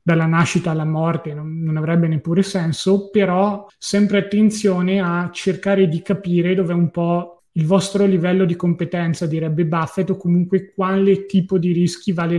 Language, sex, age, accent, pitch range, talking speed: Italian, male, 20-39, native, 160-185 Hz, 160 wpm